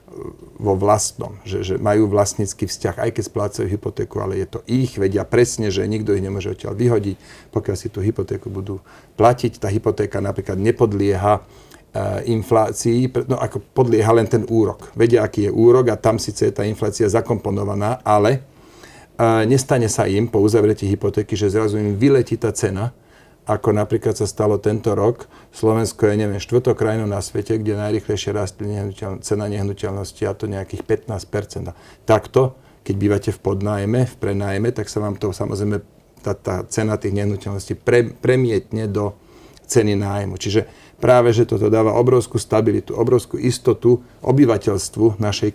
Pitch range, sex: 100-115 Hz, male